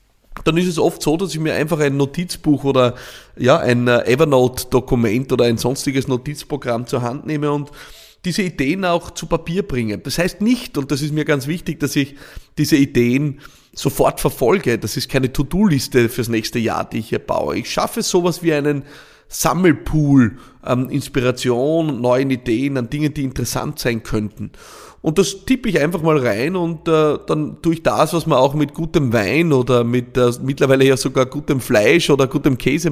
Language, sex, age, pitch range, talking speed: German, male, 30-49, 125-165 Hz, 185 wpm